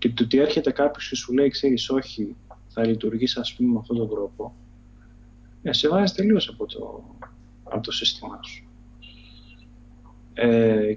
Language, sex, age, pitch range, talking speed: Greek, male, 20-39, 110-135 Hz, 150 wpm